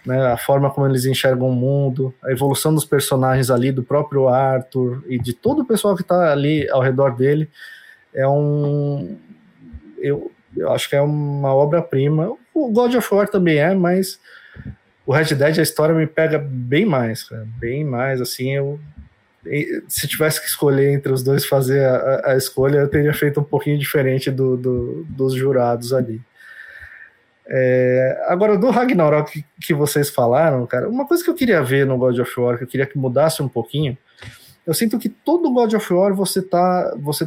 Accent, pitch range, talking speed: Brazilian, 135-165 Hz, 180 wpm